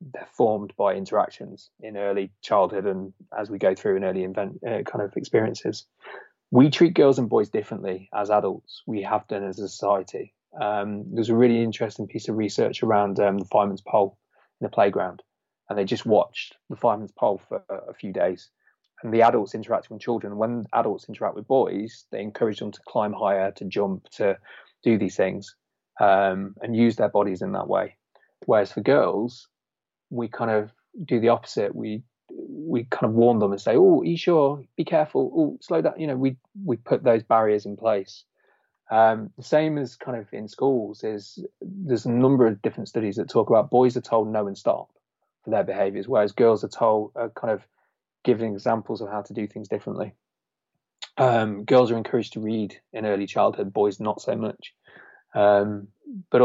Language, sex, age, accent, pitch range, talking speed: English, male, 20-39, British, 105-125 Hz, 195 wpm